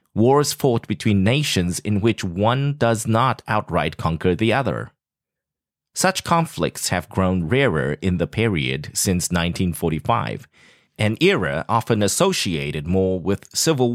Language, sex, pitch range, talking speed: English, male, 90-125 Hz, 130 wpm